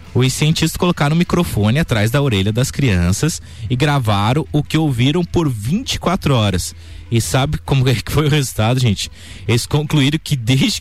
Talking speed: 170 wpm